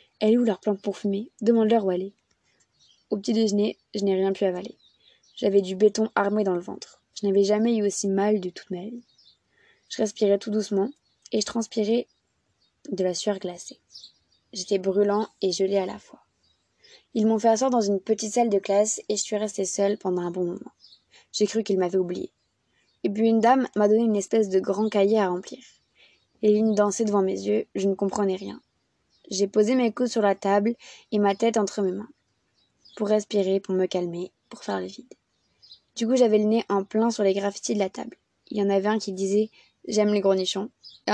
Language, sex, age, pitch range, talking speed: French, female, 20-39, 195-225 Hz, 210 wpm